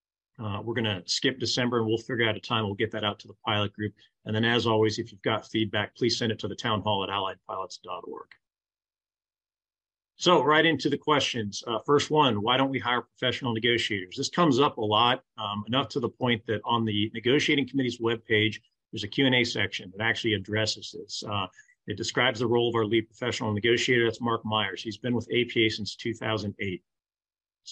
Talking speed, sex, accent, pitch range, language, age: 205 wpm, male, American, 110-130 Hz, English, 40-59